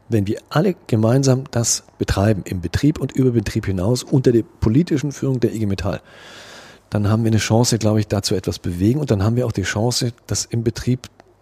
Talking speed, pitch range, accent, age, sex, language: 205 wpm, 95-120 Hz, German, 40-59, male, German